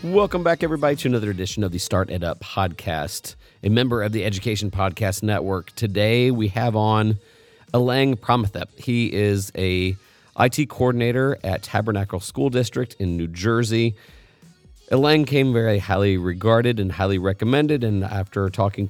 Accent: American